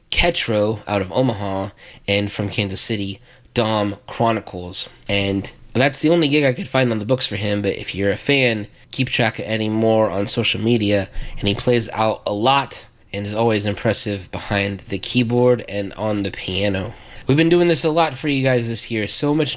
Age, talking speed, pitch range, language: 20-39, 200 wpm, 105-125 Hz, English